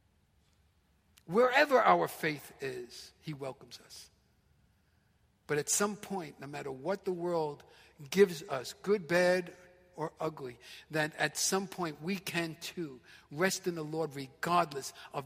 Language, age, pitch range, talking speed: English, 50-69, 145-210 Hz, 140 wpm